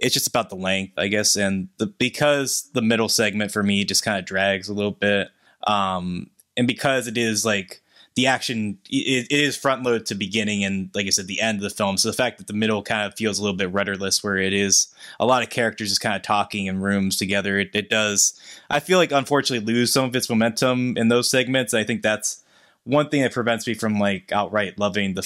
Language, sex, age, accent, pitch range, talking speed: English, male, 20-39, American, 100-115 Hz, 235 wpm